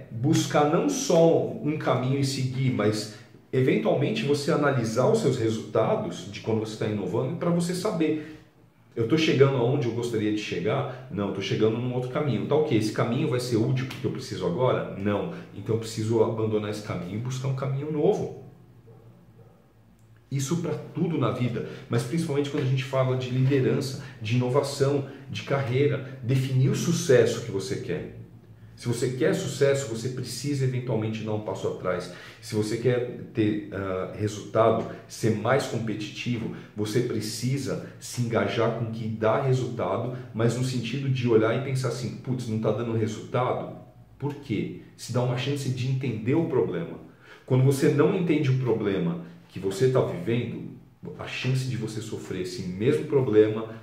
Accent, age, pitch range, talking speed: Brazilian, 40-59, 110-140 Hz, 170 wpm